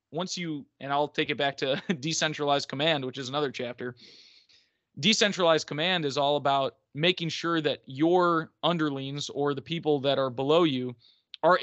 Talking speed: 165 wpm